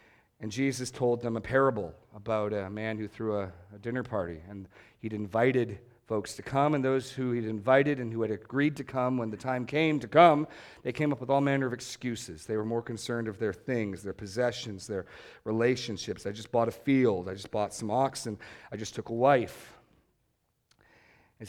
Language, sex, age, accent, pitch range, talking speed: English, male, 40-59, American, 110-135 Hz, 205 wpm